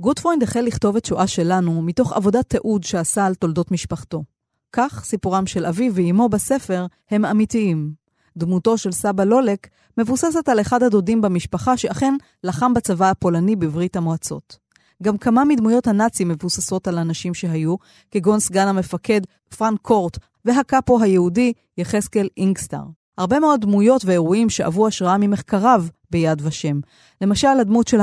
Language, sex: Hebrew, female